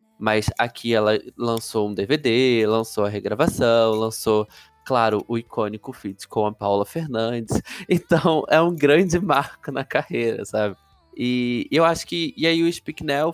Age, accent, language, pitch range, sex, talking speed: 20-39, Brazilian, Portuguese, 110-130 Hz, male, 155 wpm